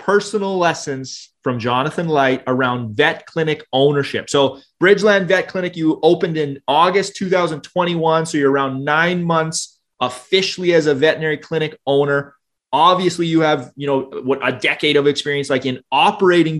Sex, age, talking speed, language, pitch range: male, 30-49, 150 wpm, English, 140-180 Hz